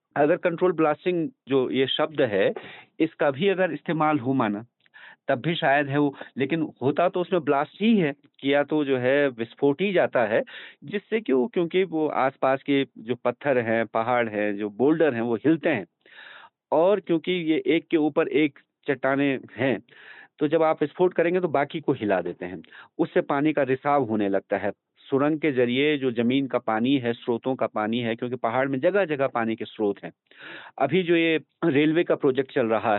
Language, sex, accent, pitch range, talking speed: Hindi, male, native, 120-165 Hz, 195 wpm